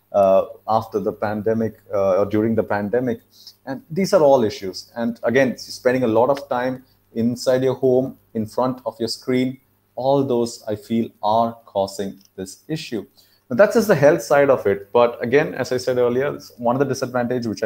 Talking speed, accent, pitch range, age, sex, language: 190 wpm, Indian, 100-125 Hz, 30-49, male, English